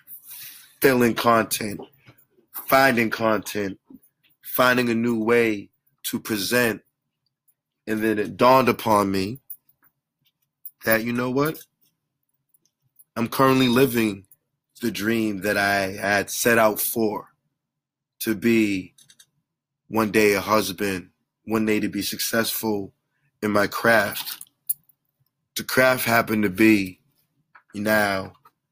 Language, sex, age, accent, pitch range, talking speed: English, male, 30-49, American, 105-130 Hz, 105 wpm